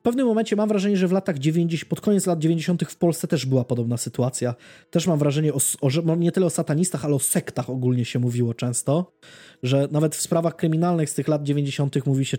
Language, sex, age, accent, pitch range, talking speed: Polish, male, 20-39, native, 135-175 Hz, 220 wpm